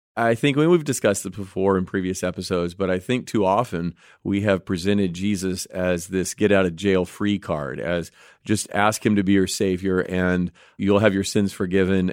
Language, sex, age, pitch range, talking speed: English, male, 40-59, 90-110 Hz, 180 wpm